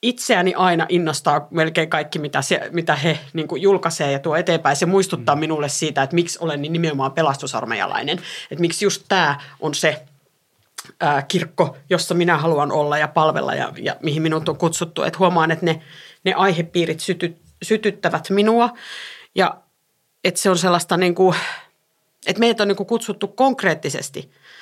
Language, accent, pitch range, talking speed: Finnish, native, 160-195 Hz, 160 wpm